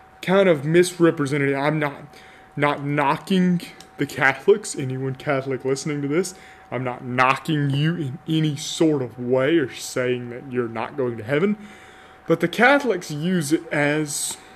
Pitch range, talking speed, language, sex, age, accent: 135-180 Hz, 155 wpm, English, male, 20-39, American